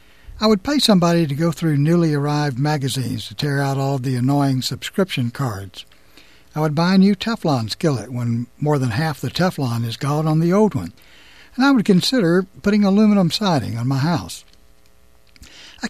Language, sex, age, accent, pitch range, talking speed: English, male, 60-79, American, 130-175 Hz, 175 wpm